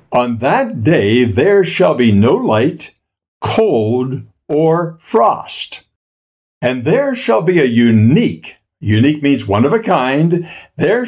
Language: English